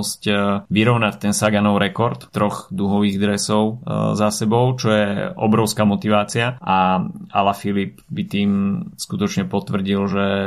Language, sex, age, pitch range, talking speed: Slovak, male, 20-39, 95-110 Hz, 115 wpm